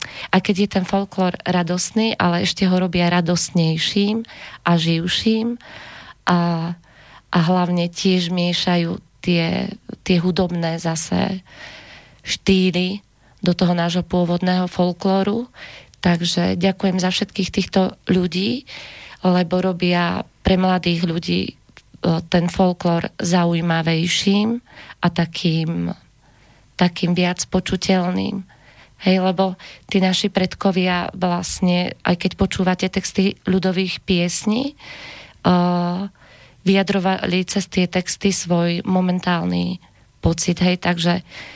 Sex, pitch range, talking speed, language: female, 175-190 Hz, 100 wpm, Slovak